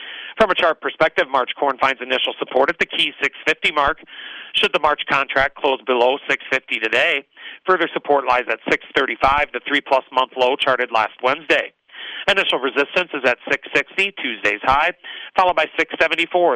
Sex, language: male, English